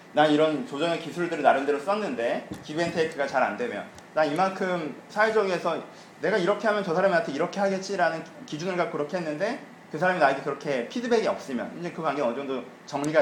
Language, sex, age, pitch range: Korean, male, 30-49, 155-215 Hz